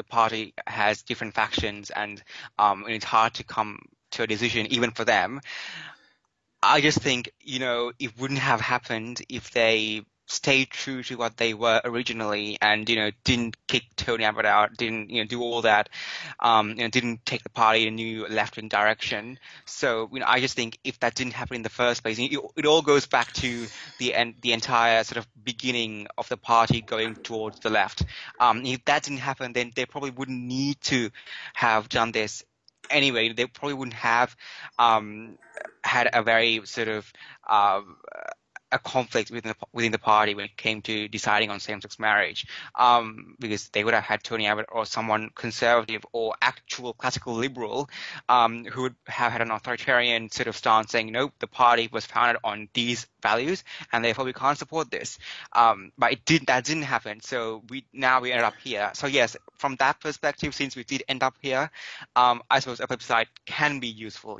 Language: English